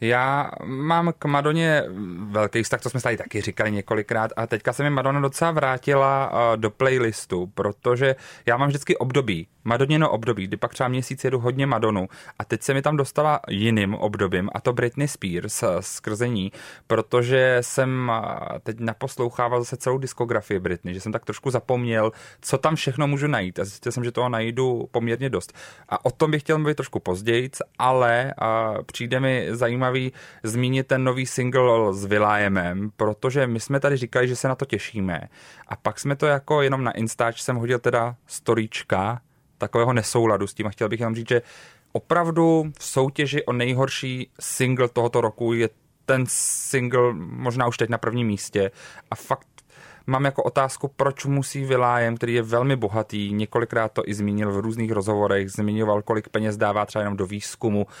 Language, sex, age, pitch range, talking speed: Czech, male, 30-49, 110-135 Hz, 175 wpm